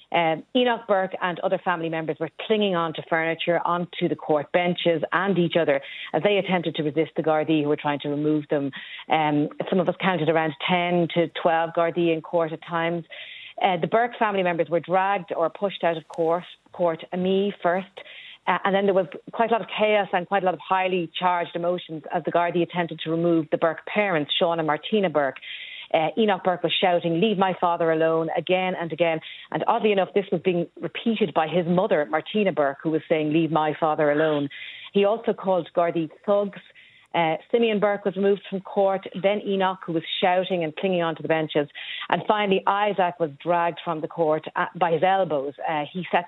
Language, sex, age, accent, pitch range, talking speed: English, female, 40-59, Irish, 160-190 Hz, 205 wpm